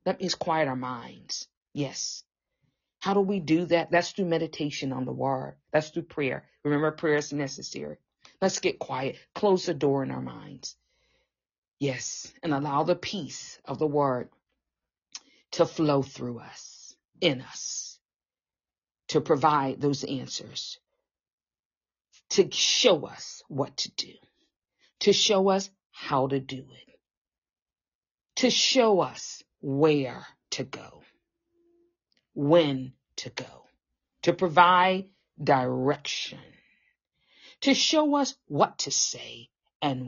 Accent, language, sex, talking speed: American, English, female, 125 wpm